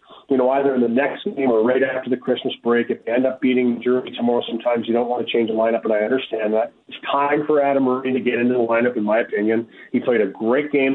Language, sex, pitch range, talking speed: English, male, 120-145 Hz, 275 wpm